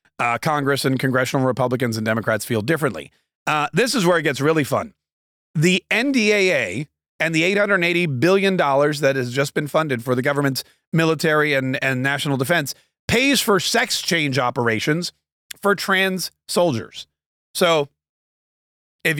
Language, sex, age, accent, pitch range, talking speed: English, male, 40-59, American, 140-185 Hz, 145 wpm